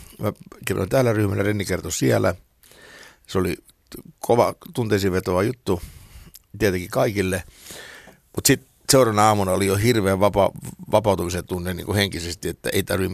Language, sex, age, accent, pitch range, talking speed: Finnish, male, 60-79, native, 95-120 Hz, 130 wpm